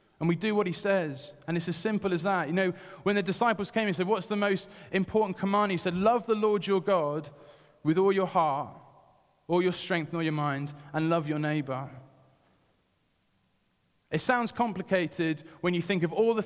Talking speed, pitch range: 205 wpm, 150-190 Hz